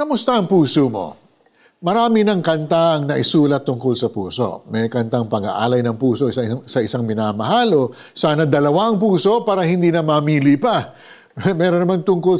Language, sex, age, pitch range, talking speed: Filipino, male, 50-69, 135-180 Hz, 150 wpm